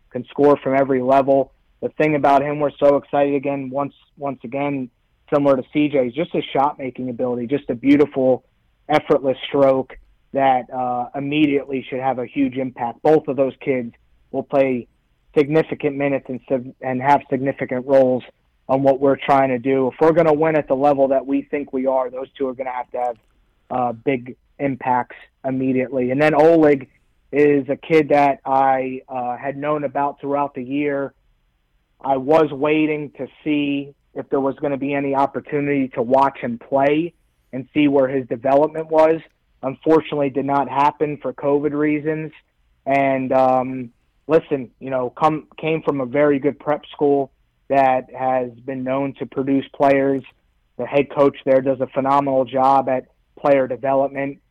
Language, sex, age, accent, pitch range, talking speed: English, male, 30-49, American, 130-145 Hz, 175 wpm